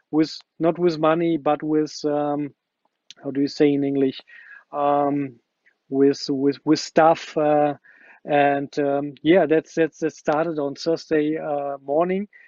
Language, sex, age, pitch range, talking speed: English, male, 40-59, 155-175 Hz, 145 wpm